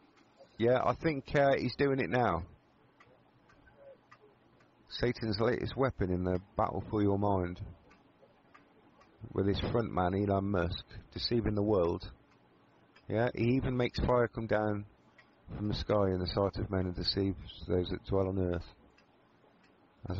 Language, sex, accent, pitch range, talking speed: English, male, British, 90-125 Hz, 145 wpm